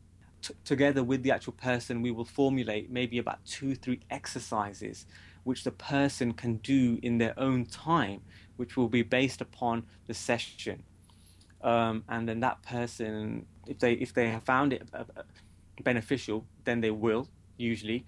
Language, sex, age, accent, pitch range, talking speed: English, male, 20-39, British, 105-125 Hz, 155 wpm